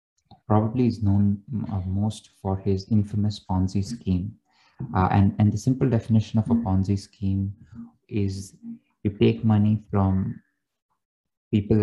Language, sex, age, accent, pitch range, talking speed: English, male, 20-39, Indian, 95-110 Hz, 125 wpm